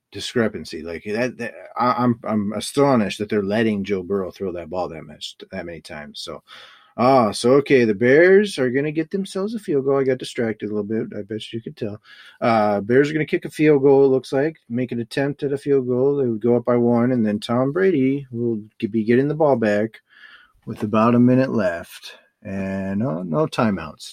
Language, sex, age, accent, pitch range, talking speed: English, male, 30-49, American, 110-140 Hz, 225 wpm